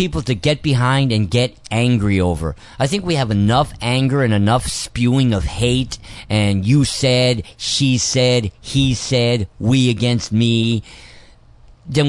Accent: American